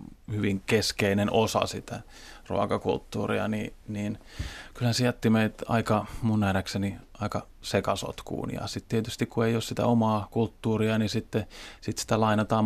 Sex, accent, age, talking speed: male, native, 30-49, 140 wpm